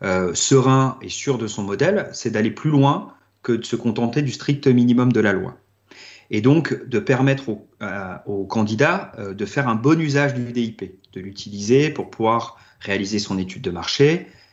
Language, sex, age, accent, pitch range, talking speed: French, male, 40-59, French, 105-135 Hz, 190 wpm